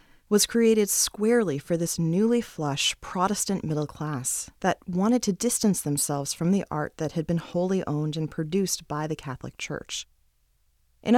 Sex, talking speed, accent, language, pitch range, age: female, 160 wpm, American, English, 155-210 Hz, 30-49